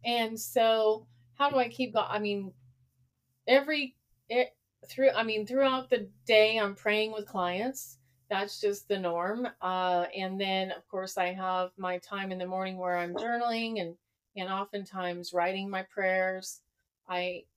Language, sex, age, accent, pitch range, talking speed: English, female, 30-49, American, 180-225 Hz, 155 wpm